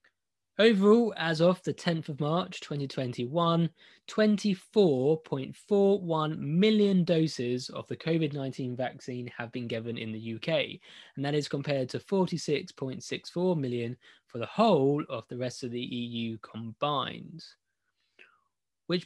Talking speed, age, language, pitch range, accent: 125 wpm, 20-39, English, 130-180 Hz, British